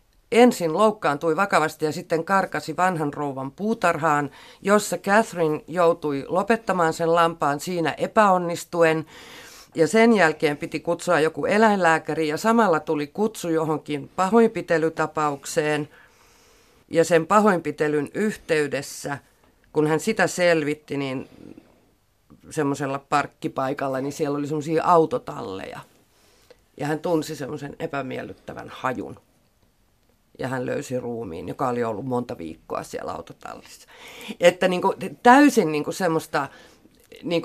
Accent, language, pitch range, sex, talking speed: native, Finnish, 145-180 Hz, female, 110 wpm